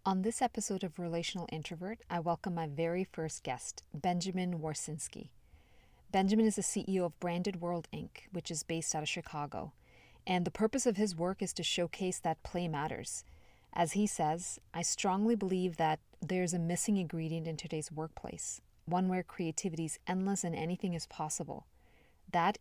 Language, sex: English, female